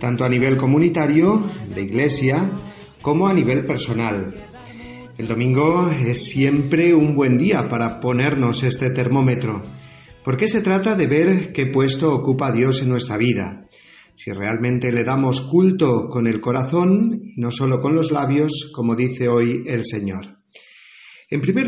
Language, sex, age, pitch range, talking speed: Spanish, male, 40-59, 120-155 Hz, 150 wpm